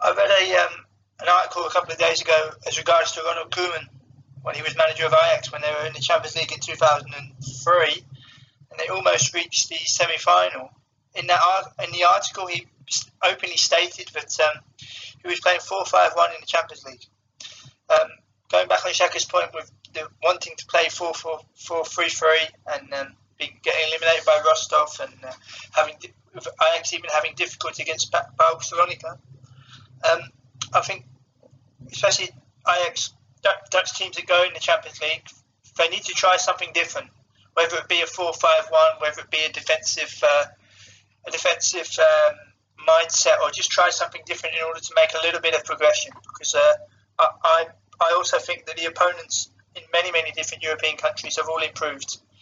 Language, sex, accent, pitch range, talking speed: English, male, British, 130-175 Hz, 170 wpm